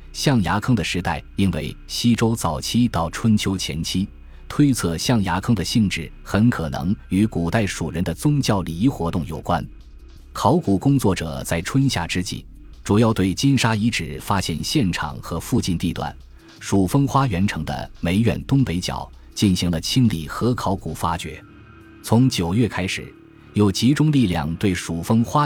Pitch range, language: 85-115 Hz, Chinese